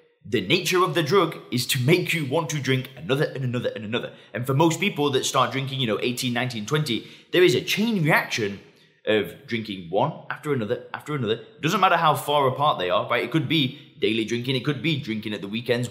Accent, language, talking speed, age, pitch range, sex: British, English, 230 wpm, 20-39, 125-160 Hz, male